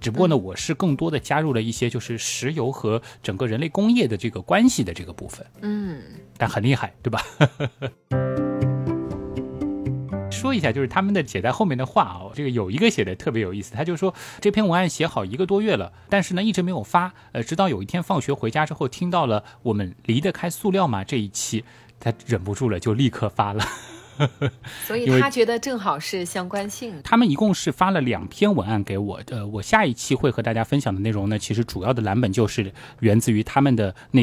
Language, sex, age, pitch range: Chinese, male, 20-39, 110-160 Hz